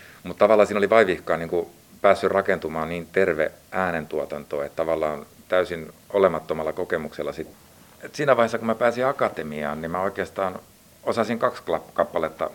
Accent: native